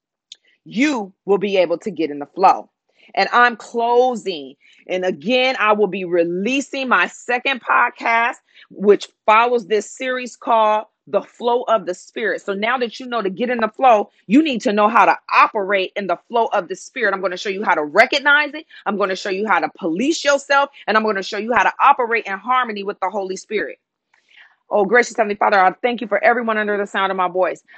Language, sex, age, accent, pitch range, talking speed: English, female, 40-59, American, 190-240 Hz, 220 wpm